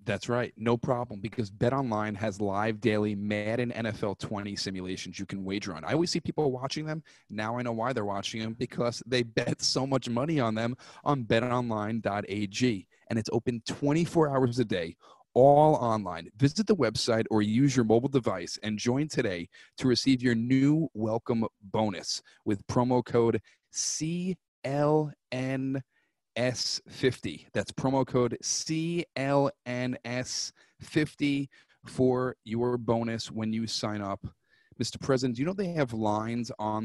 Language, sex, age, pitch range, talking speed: English, male, 30-49, 105-130 Hz, 150 wpm